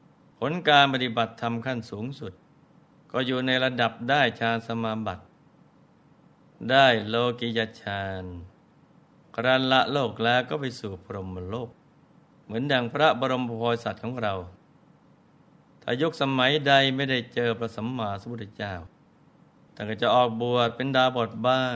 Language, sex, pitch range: Thai, male, 115-140 Hz